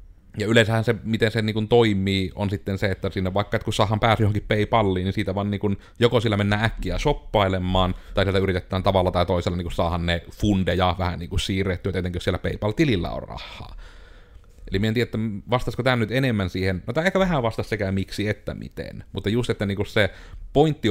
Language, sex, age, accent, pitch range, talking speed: Finnish, male, 30-49, native, 90-105 Hz, 210 wpm